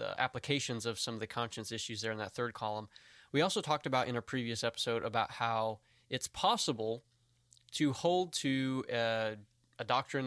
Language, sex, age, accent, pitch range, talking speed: English, male, 20-39, American, 115-140 Hz, 180 wpm